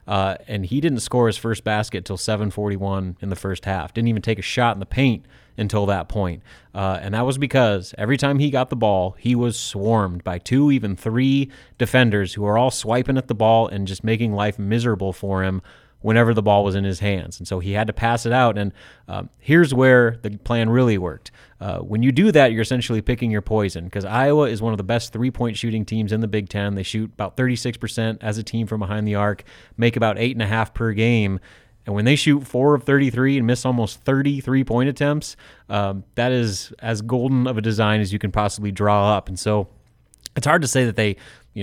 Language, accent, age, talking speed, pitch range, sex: English, American, 30-49, 230 wpm, 100-120 Hz, male